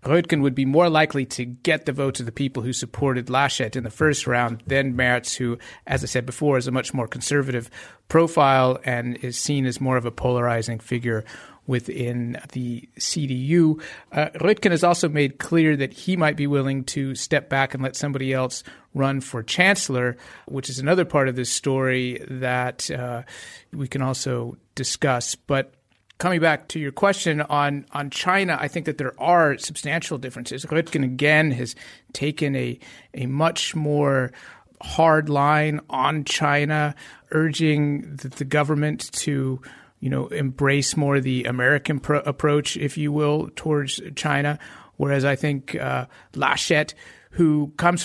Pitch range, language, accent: 130-155 Hz, English, American